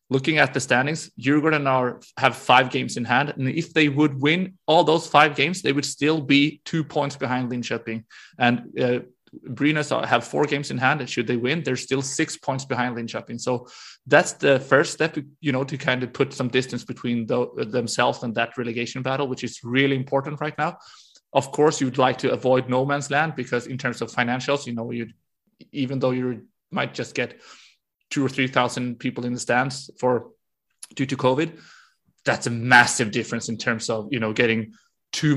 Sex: male